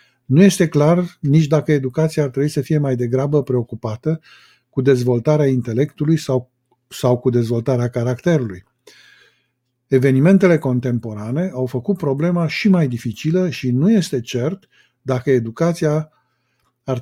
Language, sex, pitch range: Romanian, male, 125-160 Hz